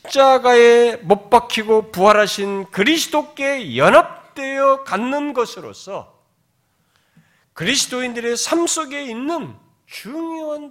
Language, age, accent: Korean, 40-59, native